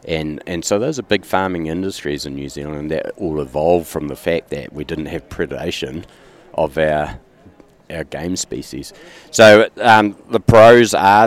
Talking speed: 170 wpm